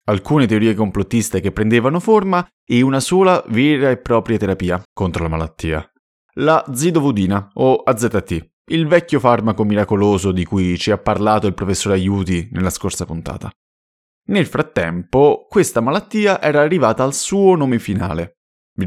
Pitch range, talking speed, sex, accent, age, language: 90-135 Hz, 145 wpm, male, native, 20-39, Italian